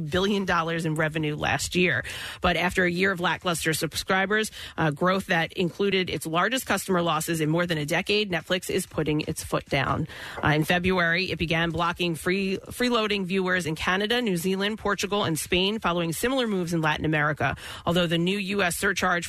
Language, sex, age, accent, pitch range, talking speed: English, female, 30-49, American, 165-190 Hz, 185 wpm